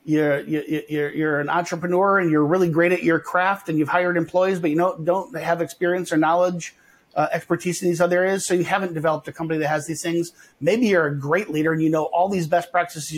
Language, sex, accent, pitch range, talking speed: English, male, American, 150-180 Hz, 240 wpm